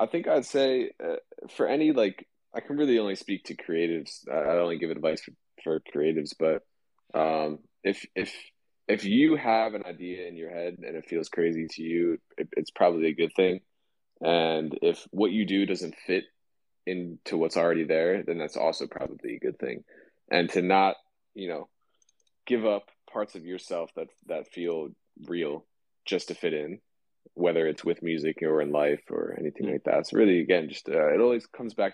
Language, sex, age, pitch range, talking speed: English, male, 20-39, 80-125 Hz, 195 wpm